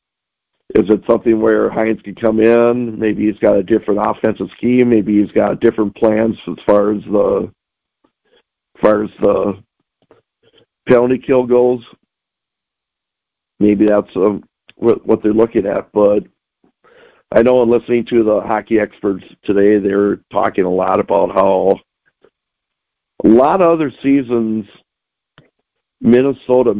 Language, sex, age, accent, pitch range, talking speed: English, male, 50-69, American, 105-120 Hz, 135 wpm